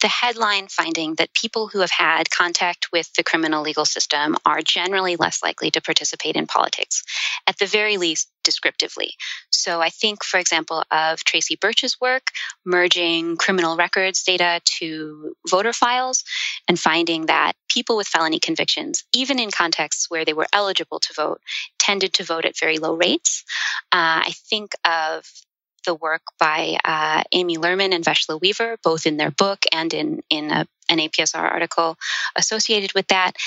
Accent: American